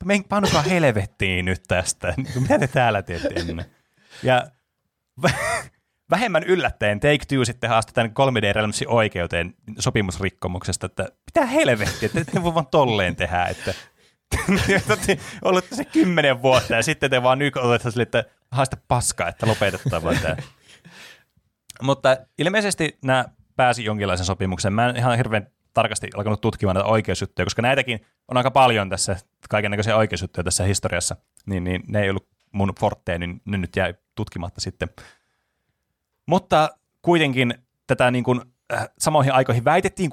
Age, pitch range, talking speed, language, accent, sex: 30-49, 95-130 Hz, 140 wpm, Finnish, native, male